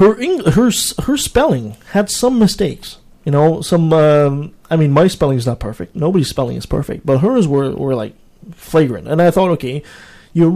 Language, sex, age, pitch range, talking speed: English, male, 20-39, 130-185 Hz, 195 wpm